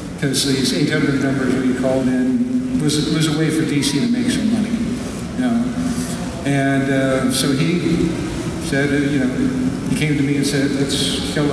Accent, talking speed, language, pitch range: American, 185 wpm, English, 135-165 Hz